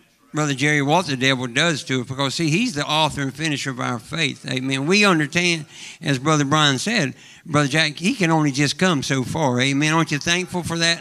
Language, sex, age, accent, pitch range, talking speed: English, male, 60-79, American, 135-170 Hz, 220 wpm